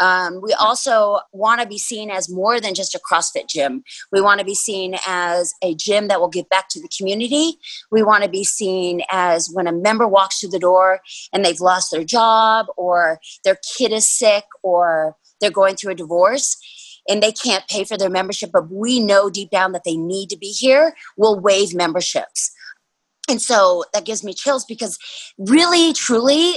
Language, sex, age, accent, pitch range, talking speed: English, female, 30-49, American, 190-240 Hz, 200 wpm